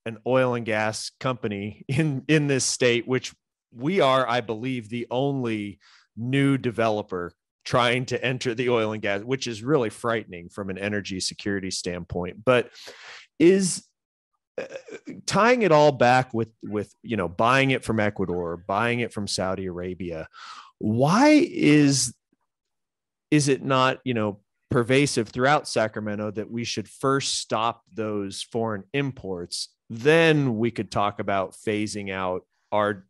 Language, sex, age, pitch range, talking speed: English, male, 30-49, 105-130 Hz, 145 wpm